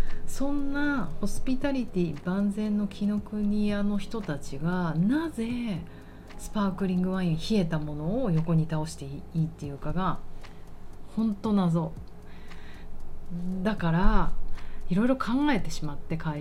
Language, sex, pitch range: Japanese, female, 150-200 Hz